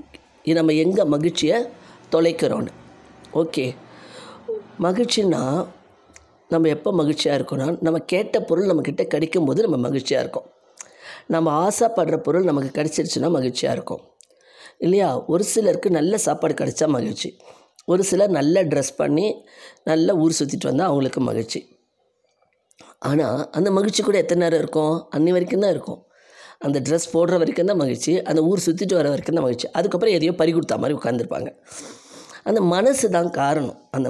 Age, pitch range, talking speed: 20-39, 155-200 Hz, 140 wpm